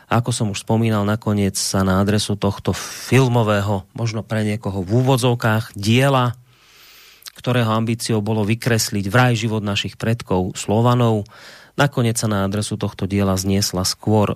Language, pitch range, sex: Slovak, 100-125 Hz, male